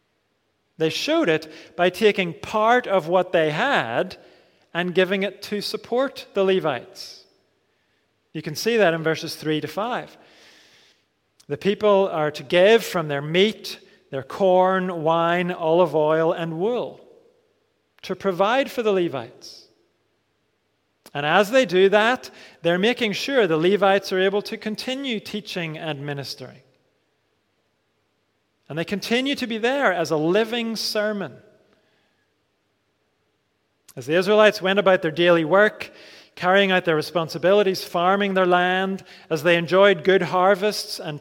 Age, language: 40-59, English